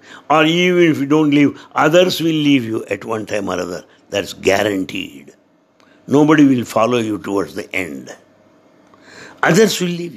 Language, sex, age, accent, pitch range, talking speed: English, male, 60-79, Indian, 130-210 Hz, 160 wpm